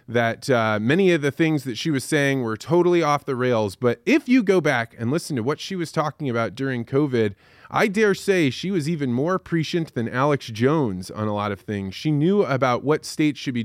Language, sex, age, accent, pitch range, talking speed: English, male, 20-39, American, 115-150 Hz, 235 wpm